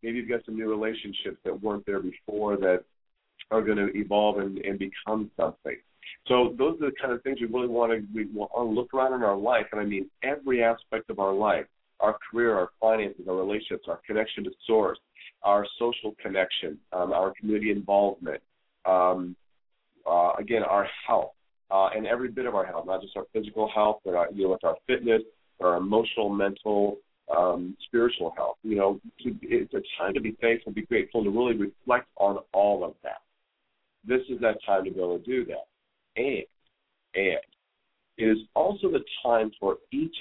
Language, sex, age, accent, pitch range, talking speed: English, male, 40-59, American, 95-115 Hz, 190 wpm